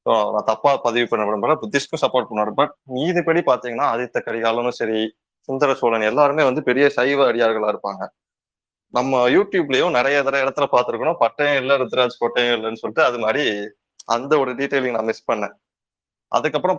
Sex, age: male, 20-39